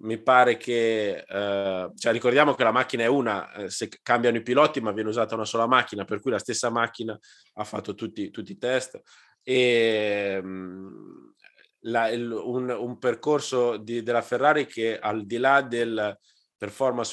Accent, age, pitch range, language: native, 20-39, 105-120 Hz, Italian